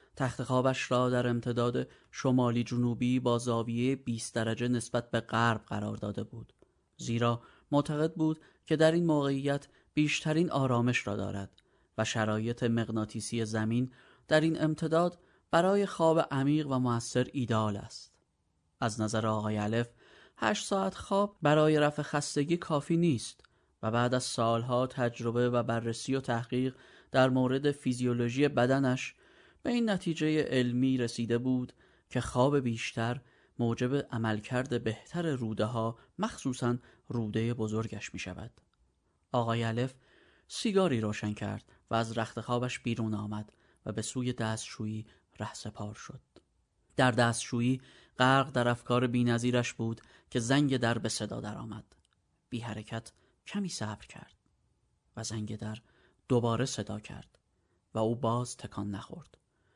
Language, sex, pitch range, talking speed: Persian, male, 115-135 Hz, 135 wpm